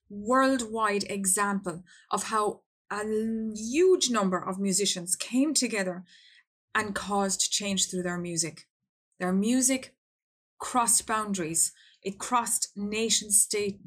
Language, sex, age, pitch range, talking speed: English, female, 30-49, 185-220 Hz, 110 wpm